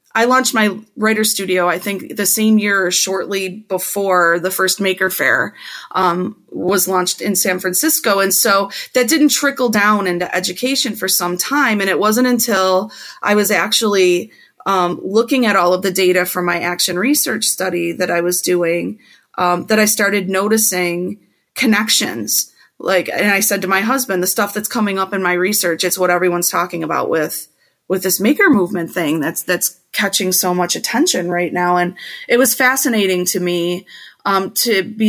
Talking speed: 180 wpm